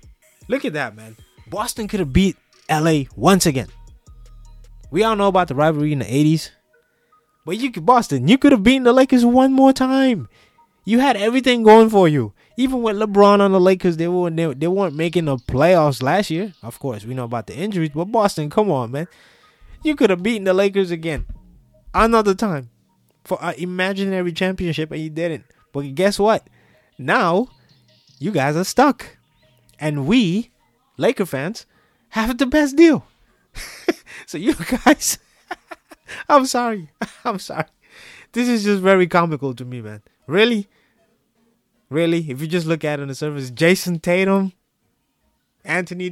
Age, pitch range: 20-39, 145-220 Hz